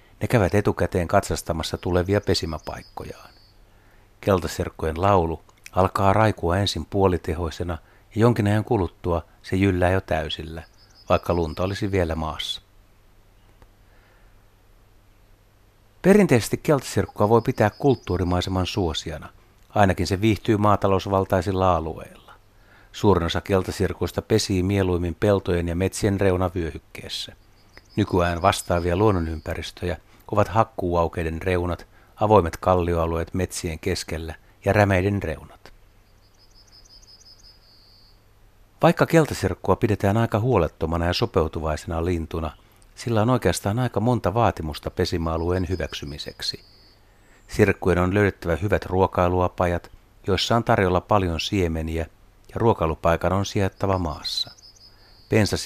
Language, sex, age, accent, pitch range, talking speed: Finnish, male, 60-79, native, 90-105 Hz, 95 wpm